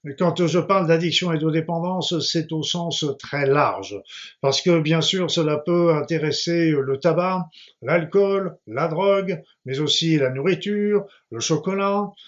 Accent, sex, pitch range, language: French, male, 150-180 Hz, French